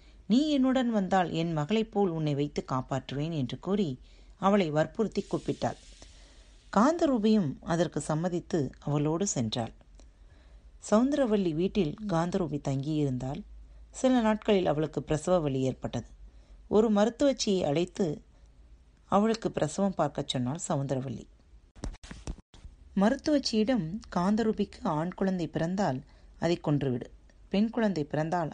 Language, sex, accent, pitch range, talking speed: Tamil, female, native, 135-200 Hz, 100 wpm